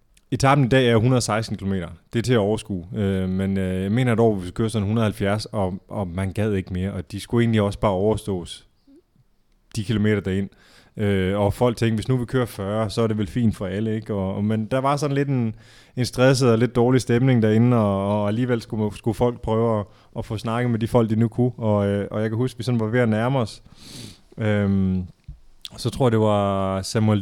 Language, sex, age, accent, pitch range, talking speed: Danish, male, 20-39, native, 100-120 Hz, 240 wpm